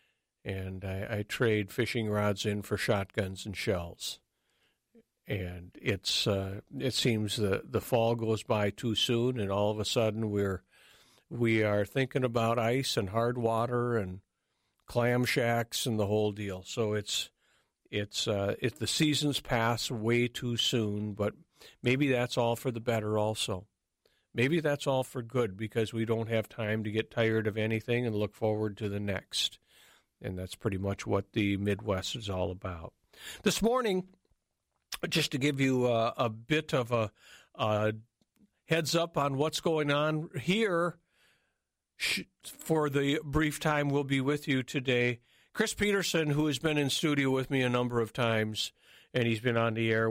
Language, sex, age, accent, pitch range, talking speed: English, male, 50-69, American, 105-135 Hz, 170 wpm